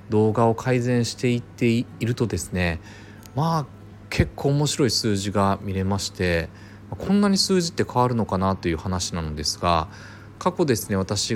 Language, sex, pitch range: Japanese, male, 95-125 Hz